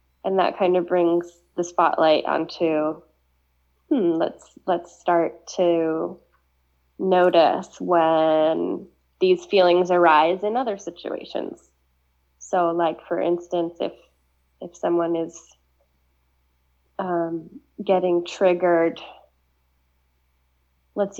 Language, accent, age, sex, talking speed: English, American, 20-39, female, 95 wpm